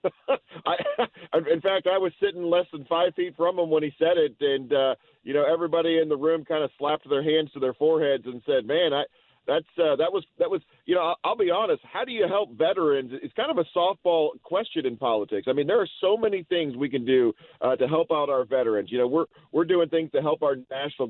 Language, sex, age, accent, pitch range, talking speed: English, male, 40-59, American, 140-185 Hz, 245 wpm